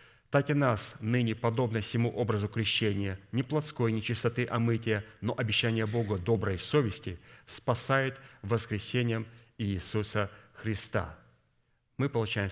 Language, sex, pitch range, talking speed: Russian, male, 105-120 Hz, 115 wpm